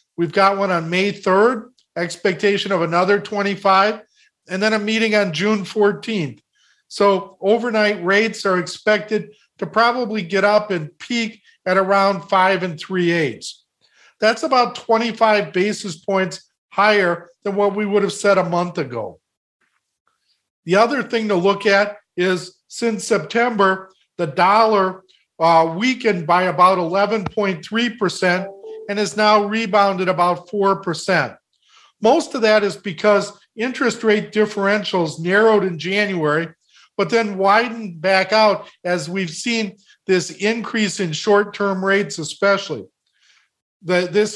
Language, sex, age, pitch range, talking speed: English, male, 50-69, 185-215 Hz, 130 wpm